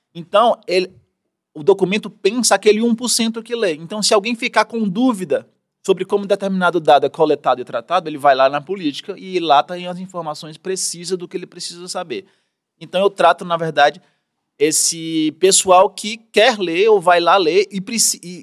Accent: Brazilian